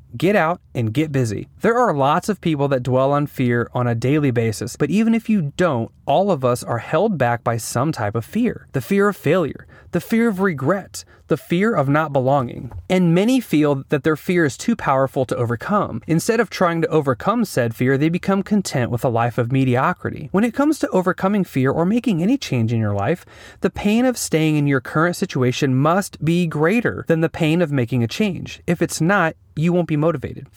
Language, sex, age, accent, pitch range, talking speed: English, male, 30-49, American, 135-190 Hz, 220 wpm